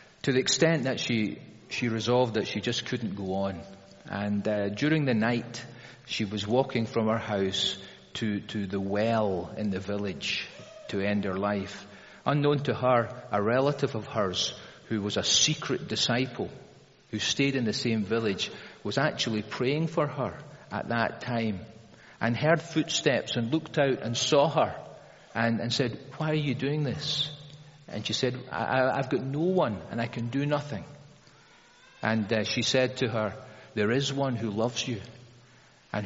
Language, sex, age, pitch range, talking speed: English, male, 40-59, 110-140 Hz, 175 wpm